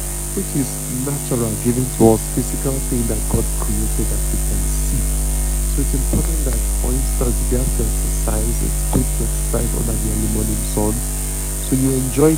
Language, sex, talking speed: English, male, 175 wpm